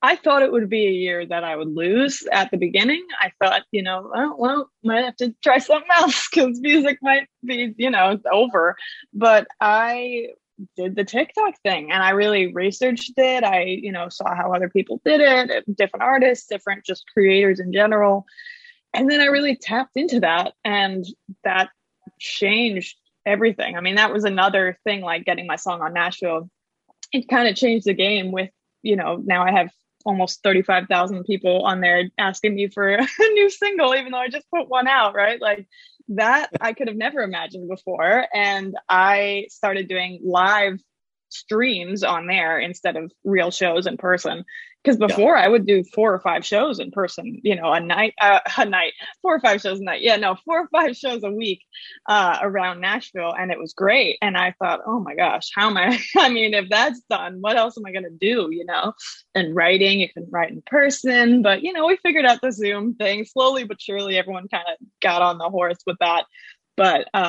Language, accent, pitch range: English, American, 185-250 Hz